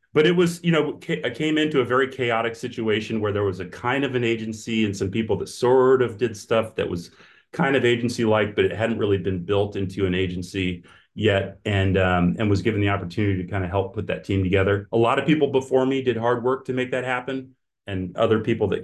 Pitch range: 95-115 Hz